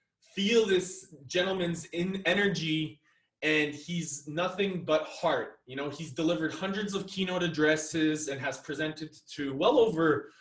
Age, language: 20-39, English